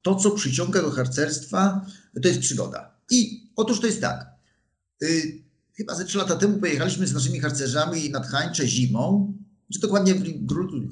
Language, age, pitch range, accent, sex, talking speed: Polish, 50-69, 130-200 Hz, native, male, 165 wpm